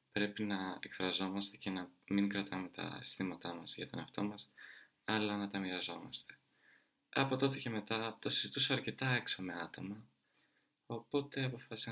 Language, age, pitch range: Greek, 20-39, 100-130 Hz